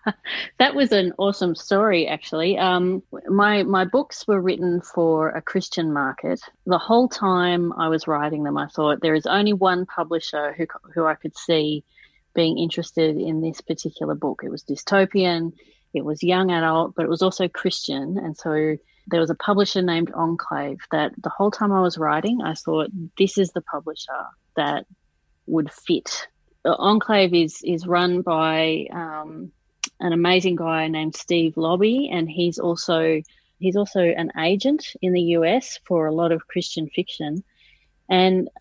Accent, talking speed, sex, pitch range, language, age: Australian, 165 wpm, female, 160-195 Hz, English, 30-49